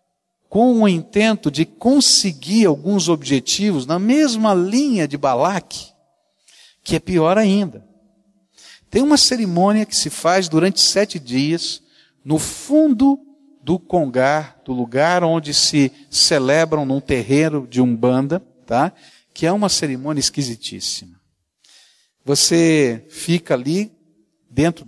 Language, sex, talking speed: Portuguese, male, 115 wpm